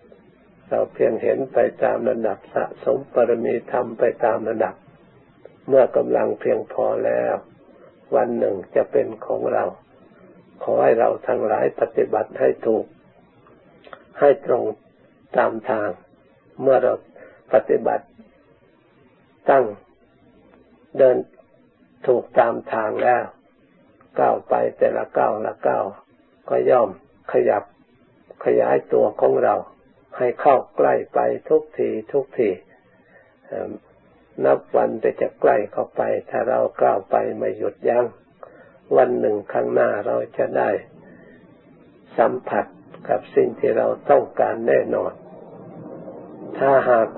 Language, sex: Thai, male